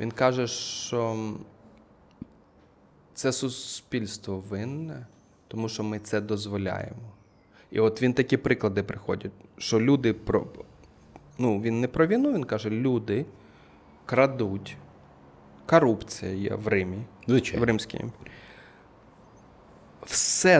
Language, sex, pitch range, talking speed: Ukrainian, male, 110-170 Hz, 100 wpm